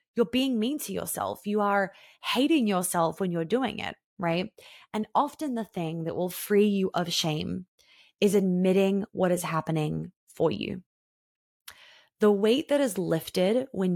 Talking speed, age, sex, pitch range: 160 wpm, 20-39, female, 170-215 Hz